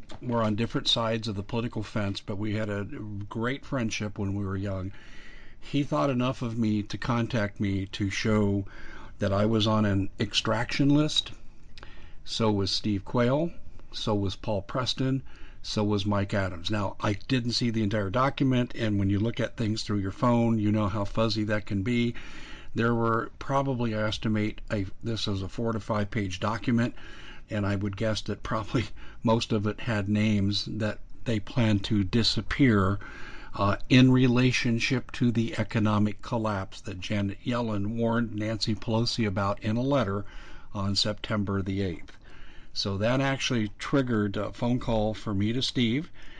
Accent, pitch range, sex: American, 100-120 Hz, male